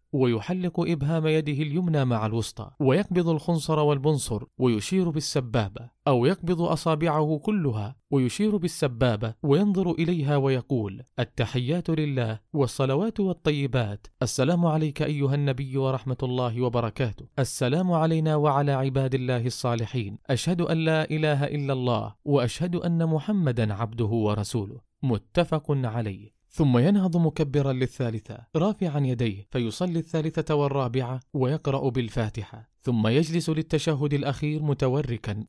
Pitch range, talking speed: 125-155 Hz, 110 wpm